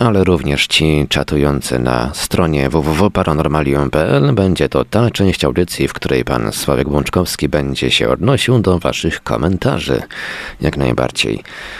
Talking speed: 125 wpm